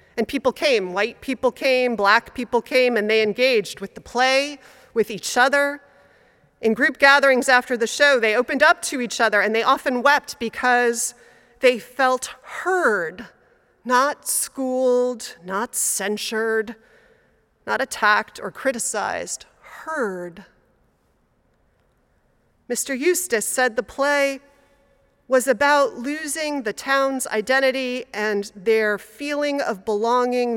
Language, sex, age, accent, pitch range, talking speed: English, female, 40-59, American, 215-275 Hz, 125 wpm